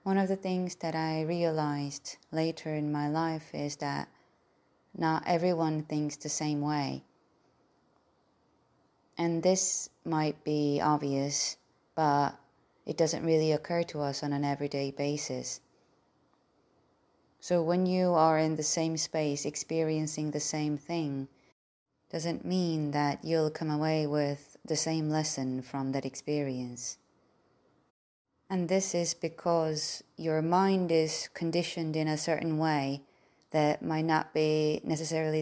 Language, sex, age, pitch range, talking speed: English, female, 20-39, 145-165 Hz, 130 wpm